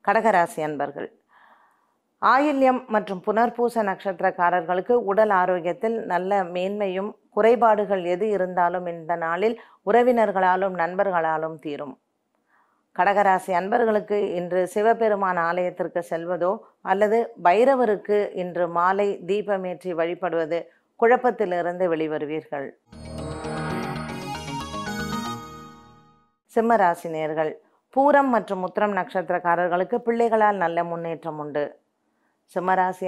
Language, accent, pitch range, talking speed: Tamil, native, 165-215 Hz, 75 wpm